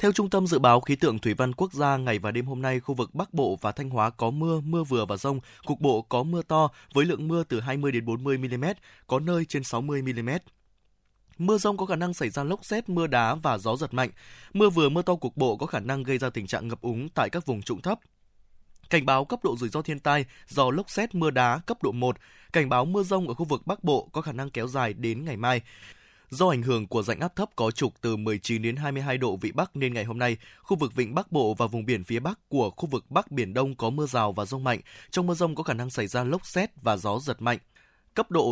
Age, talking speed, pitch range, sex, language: 20-39, 265 wpm, 115-155 Hz, male, Vietnamese